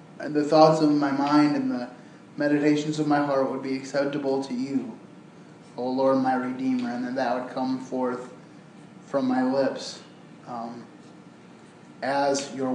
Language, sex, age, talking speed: English, male, 20-39, 150 wpm